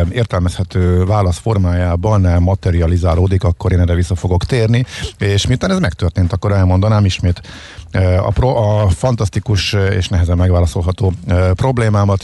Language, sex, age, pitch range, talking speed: Hungarian, male, 50-69, 90-105 Hz, 125 wpm